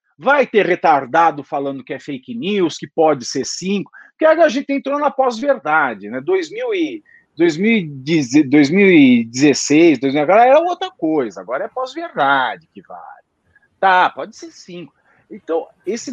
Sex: male